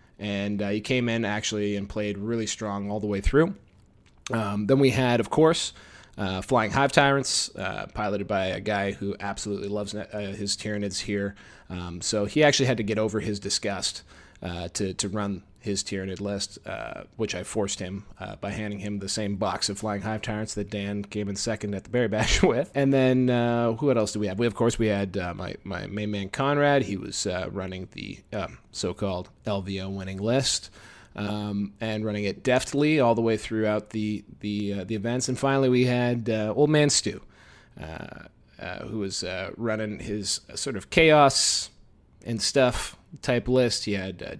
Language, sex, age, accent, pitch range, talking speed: English, male, 30-49, American, 100-125 Hz, 200 wpm